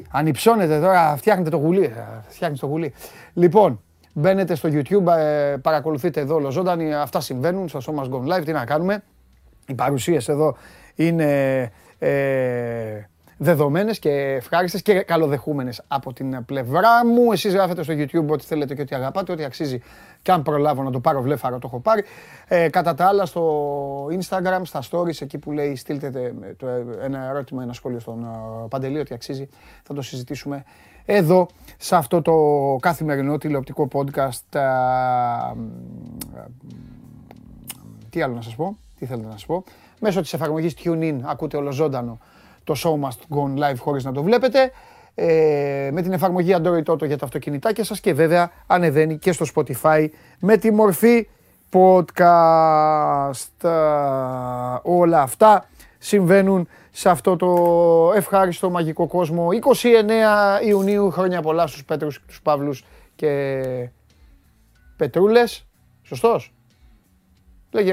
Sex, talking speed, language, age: male, 140 wpm, Greek, 30-49